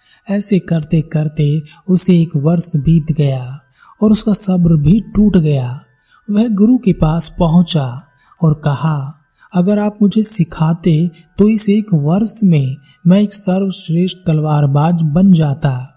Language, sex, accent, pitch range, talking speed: Hindi, male, native, 150-185 Hz, 135 wpm